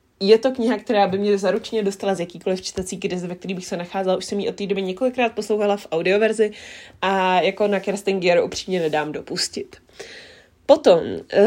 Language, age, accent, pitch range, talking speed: Czech, 20-39, native, 185-230 Hz, 185 wpm